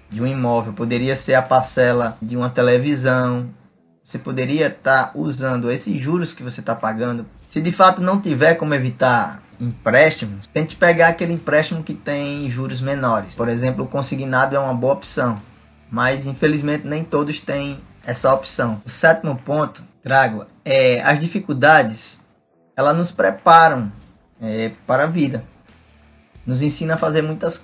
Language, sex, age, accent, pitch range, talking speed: Portuguese, male, 20-39, Brazilian, 120-160 Hz, 150 wpm